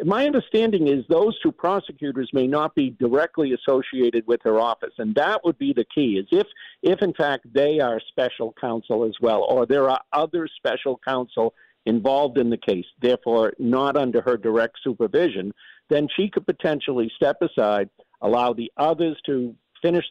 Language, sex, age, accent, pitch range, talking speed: English, male, 50-69, American, 120-165 Hz, 175 wpm